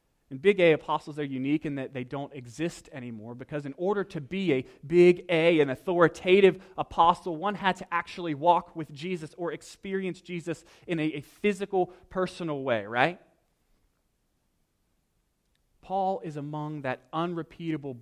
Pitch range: 135-185 Hz